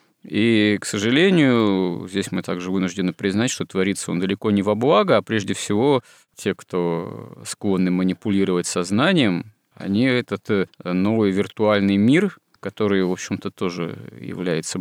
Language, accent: Russian, native